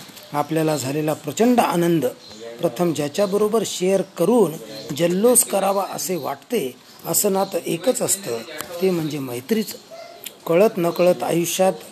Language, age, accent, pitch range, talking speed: Marathi, 40-59, native, 155-210 Hz, 110 wpm